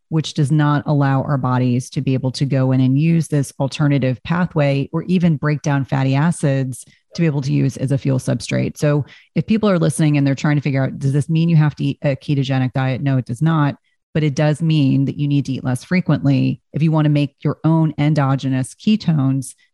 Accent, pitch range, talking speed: American, 135-160 Hz, 235 wpm